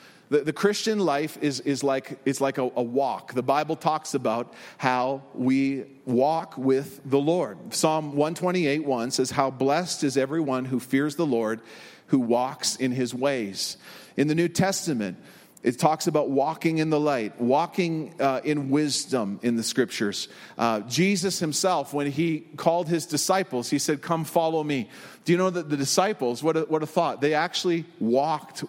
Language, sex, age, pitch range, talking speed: English, male, 40-59, 135-175 Hz, 175 wpm